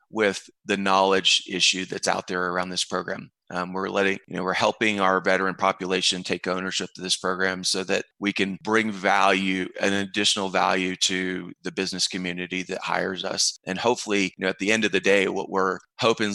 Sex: male